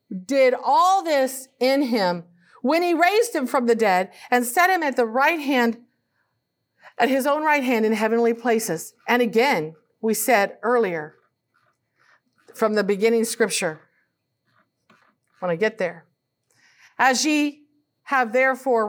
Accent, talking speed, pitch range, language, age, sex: American, 140 wpm, 190-255 Hz, English, 50-69, female